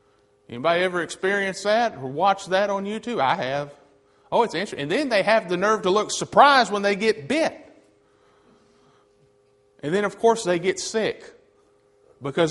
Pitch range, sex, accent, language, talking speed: 140-195 Hz, male, American, English, 170 wpm